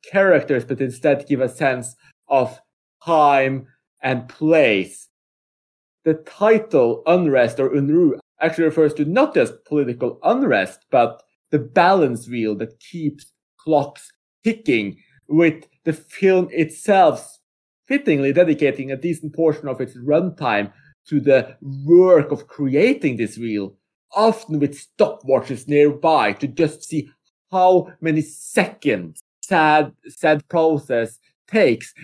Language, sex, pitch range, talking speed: English, male, 135-175 Hz, 120 wpm